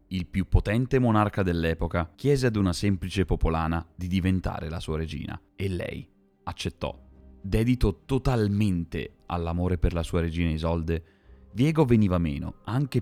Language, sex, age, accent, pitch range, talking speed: Italian, male, 30-49, native, 80-100 Hz, 140 wpm